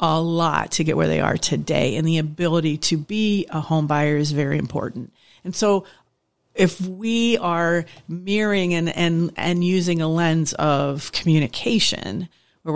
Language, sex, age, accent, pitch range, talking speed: English, female, 50-69, American, 150-175 Hz, 160 wpm